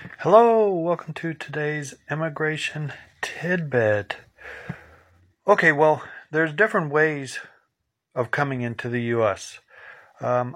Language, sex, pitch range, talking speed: English, male, 110-140 Hz, 95 wpm